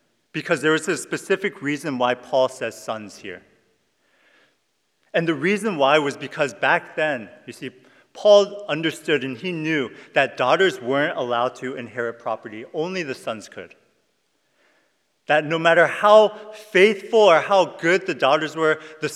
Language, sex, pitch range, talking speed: English, male, 150-220 Hz, 155 wpm